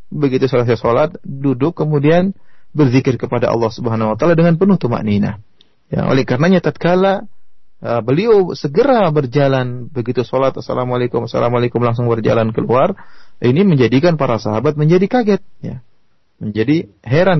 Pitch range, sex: 115-150 Hz, male